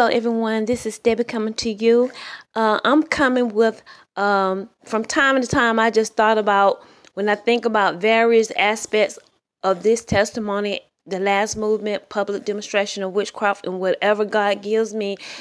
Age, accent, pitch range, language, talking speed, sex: 20-39, American, 200-235 Hz, English, 165 wpm, female